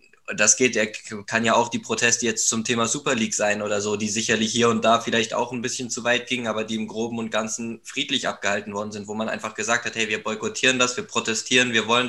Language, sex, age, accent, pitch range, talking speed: German, male, 20-39, German, 110-120 Hz, 255 wpm